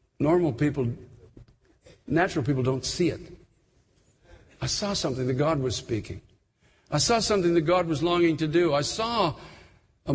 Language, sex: English, male